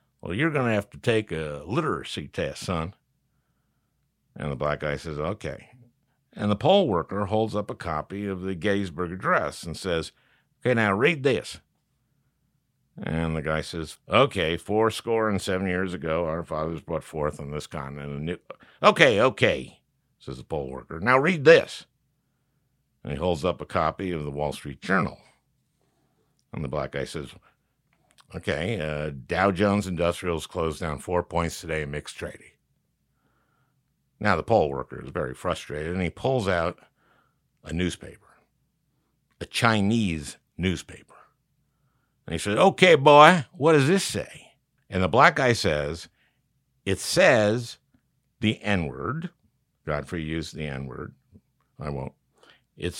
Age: 60-79